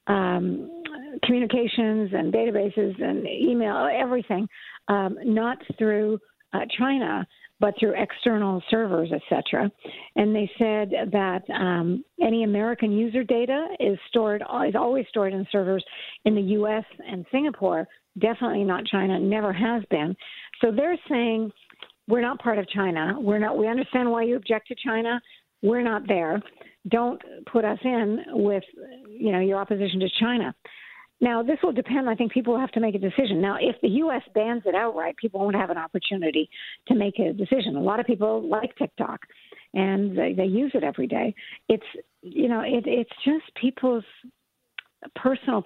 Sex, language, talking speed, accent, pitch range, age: female, English, 165 wpm, American, 200-250 Hz, 50-69